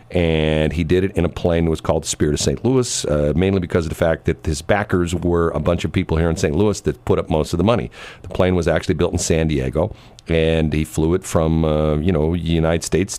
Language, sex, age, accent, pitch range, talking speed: English, male, 40-59, American, 90-130 Hz, 265 wpm